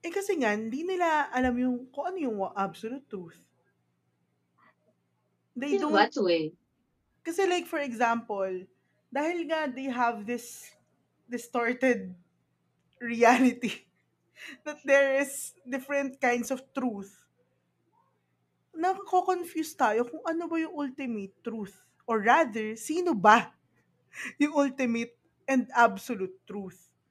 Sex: female